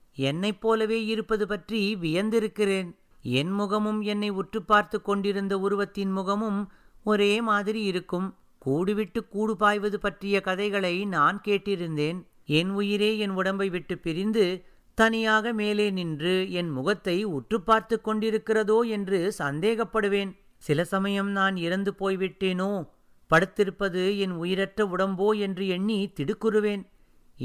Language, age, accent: Tamil, 50-69, native